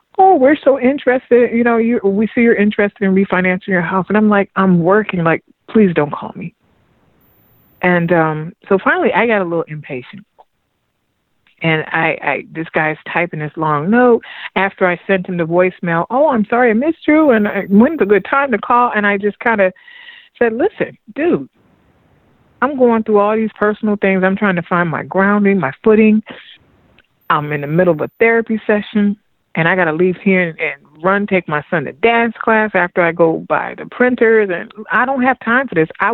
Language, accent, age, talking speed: English, American, 40-59, 200 wpm